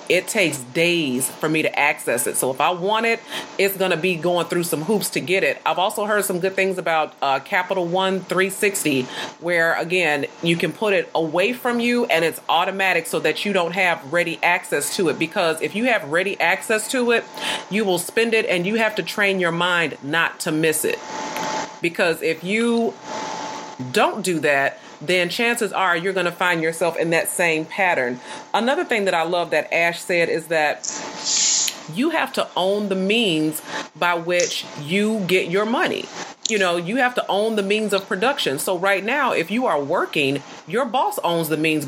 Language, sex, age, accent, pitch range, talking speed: English, female, 40-59, American, 165-215 Hz, 200 wpm